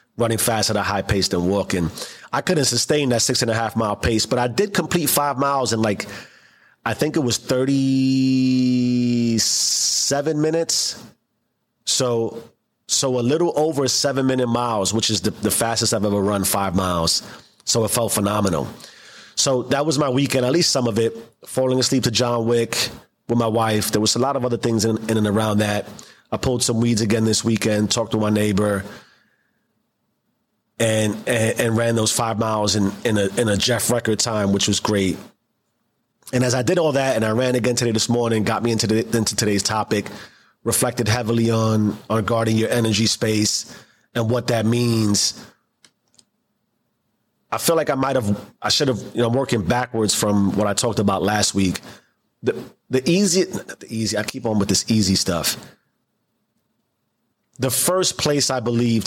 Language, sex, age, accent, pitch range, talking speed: English, male, 30-49, American, 105-125 Hz, 185 wpm